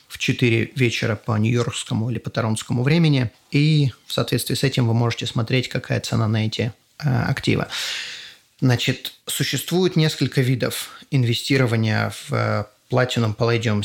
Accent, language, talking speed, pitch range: native, Russian, 140 wpm, 115-140 Hz